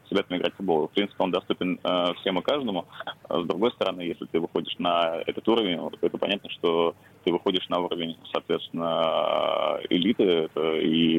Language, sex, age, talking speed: Russian, male, 20-39, 190 wpm